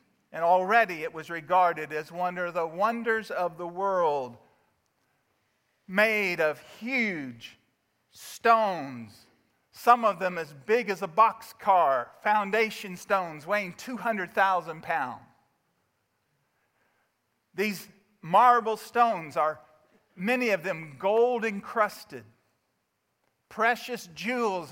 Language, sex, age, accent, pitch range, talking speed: English, male, 50-69, American, 175-225 Hz, 100 wpm